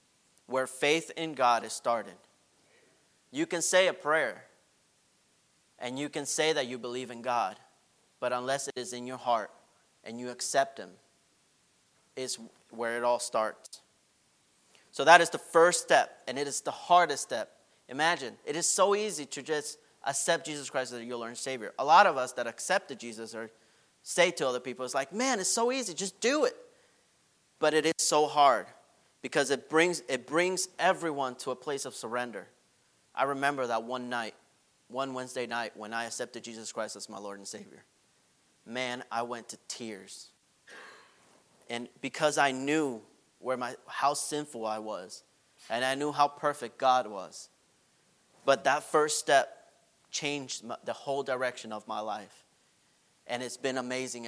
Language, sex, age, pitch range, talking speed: English, male, 30-49, 120-150 Hz, 170 wpm